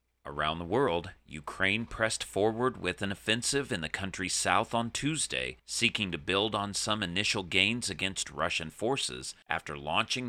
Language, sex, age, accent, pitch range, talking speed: English, male, 40-59, American, 75-110 Hz, 155 wpm